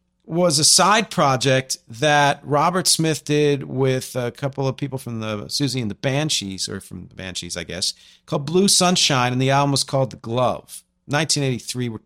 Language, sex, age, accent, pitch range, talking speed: English, male, 40-59, American, 110-150 Hz, 185 wpm